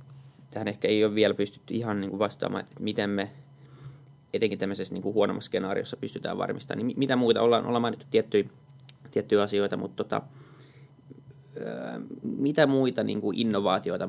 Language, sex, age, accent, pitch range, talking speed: Finnish, male, 20-39, native, 105-135 Hz, 120 wpm